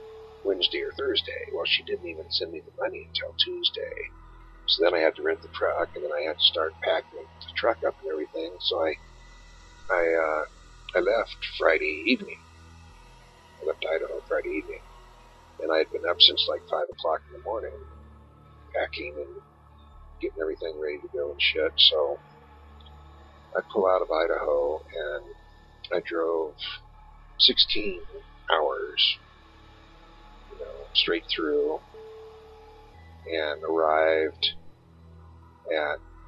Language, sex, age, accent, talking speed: English, male, 50-69, American, 135 wpm